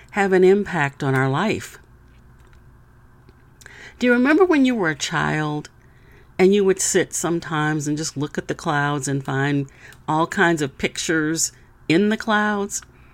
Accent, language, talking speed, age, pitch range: American, English, 155 wpm, 50-69, 145-205 Hz